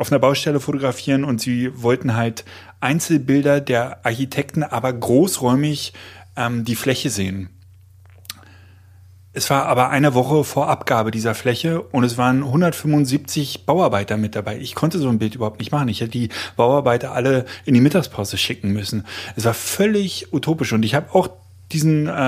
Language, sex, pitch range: German, male, 105-135 Hz